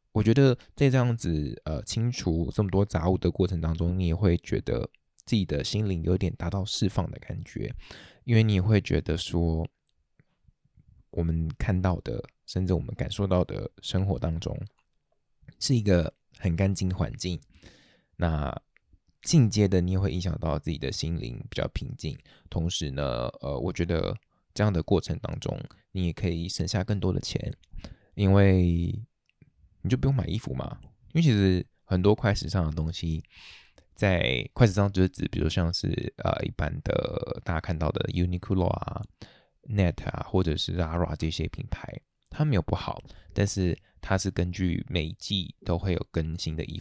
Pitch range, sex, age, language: 85-100 Hz, male, 20-39, Chinese